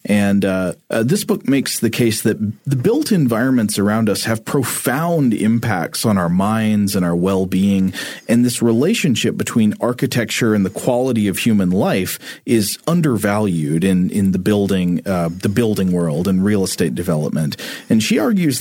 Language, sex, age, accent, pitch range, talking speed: English, male, 40-59, American, 95-120 Hz, 165 wpm